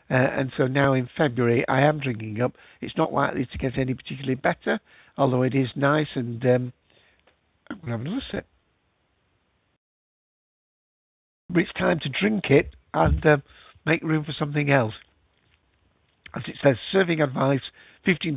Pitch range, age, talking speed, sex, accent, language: 125-155 Hz, 60-79, 155 wpm, male, British, English